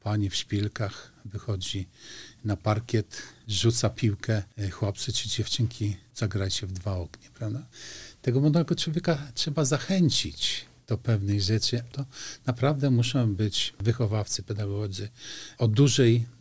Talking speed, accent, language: 115 wpm, native, Polish